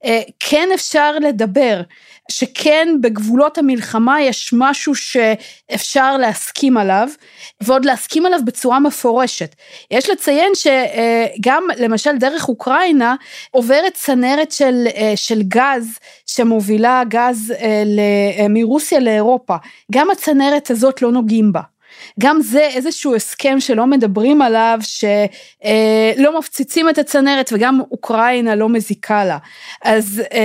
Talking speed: 105 wpm